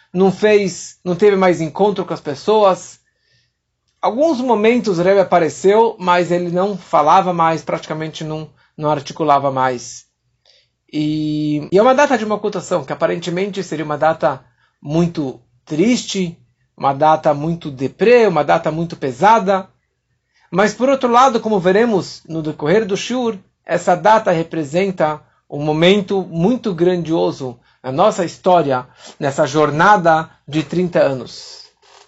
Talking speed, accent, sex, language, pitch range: 135 wpm, Brazilian, male, Portuguese, 145-195 Hz